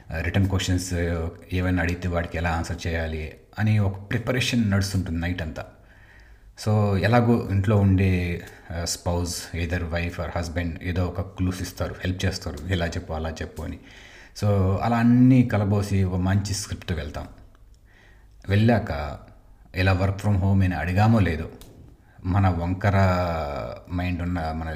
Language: Telugu